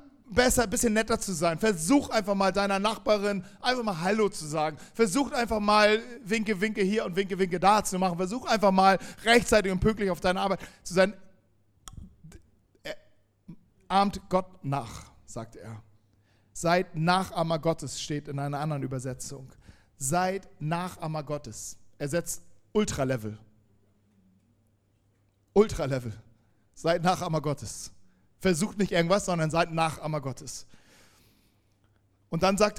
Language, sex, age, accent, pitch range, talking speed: German, male, 40-59, German, 145-225 Hz, 135 wpm